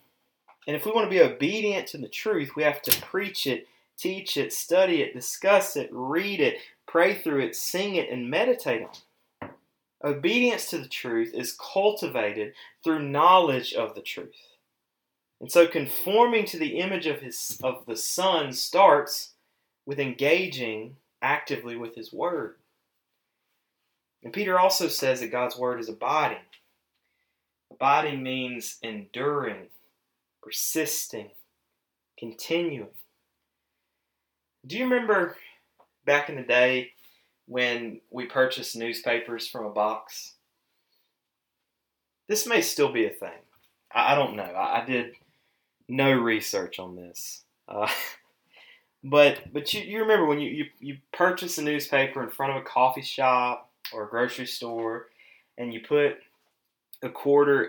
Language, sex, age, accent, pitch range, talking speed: English, male, 30-49, American, 120-185 Hz, 140 wpm